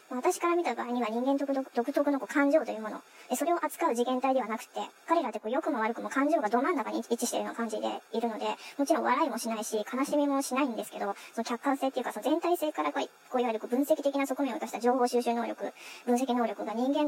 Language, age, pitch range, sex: Japanese, 20-39, 230-275 Hz, male